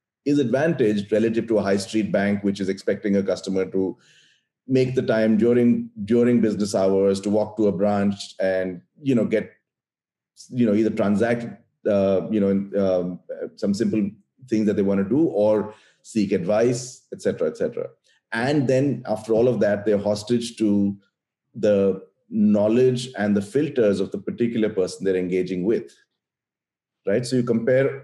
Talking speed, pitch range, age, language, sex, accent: 165 wpm, 100-120 Hz, 30-49, English, male, Indian